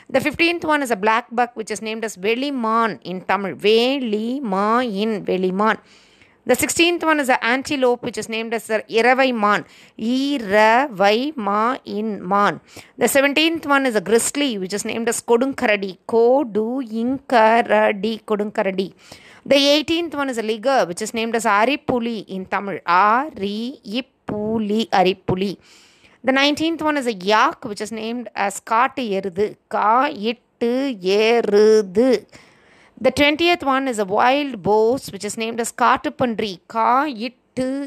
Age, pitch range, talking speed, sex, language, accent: 20-39, 210-260 Hz, 150 wpm, female, Tamil, native